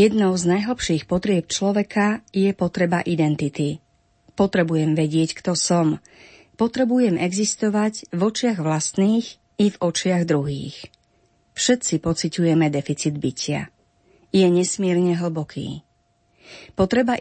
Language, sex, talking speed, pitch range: Slovak, female, 100 wpm, 160-200 Hz